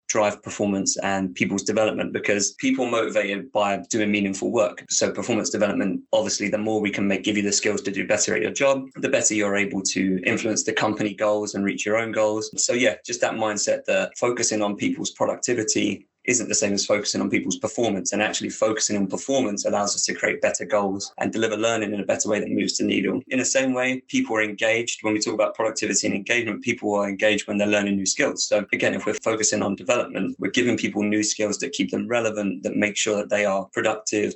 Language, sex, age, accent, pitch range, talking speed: English, male, 20-39, British, 100-110 Hz, 225 wpm